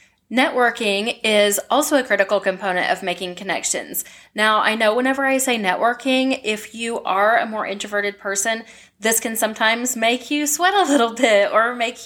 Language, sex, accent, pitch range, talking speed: English, female, American, 205-255 Hz, 170 wpm